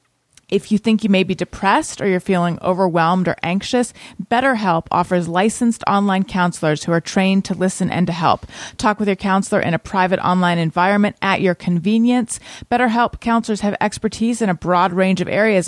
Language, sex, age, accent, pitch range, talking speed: English, female, 30-49, American, 180-215 Hz, 185 wpm